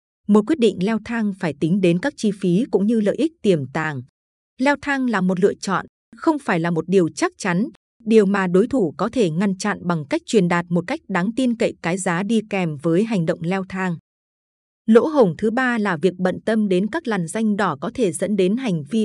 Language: Vietnamese